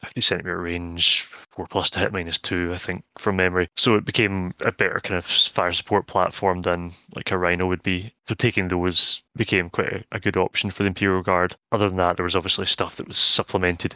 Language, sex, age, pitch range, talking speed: English, male, 20-39, 90-100 Hz, 225 wpm